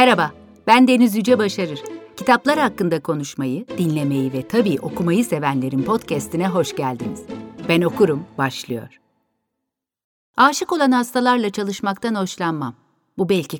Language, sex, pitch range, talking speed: Turkish, female, 145-210 Hz, 110 wpm